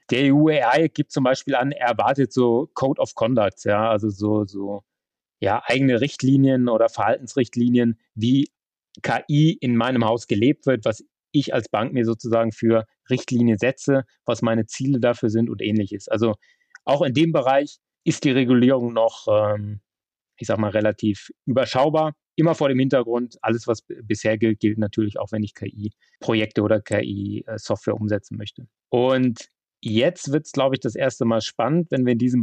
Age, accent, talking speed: 30-49, German, 165 wpm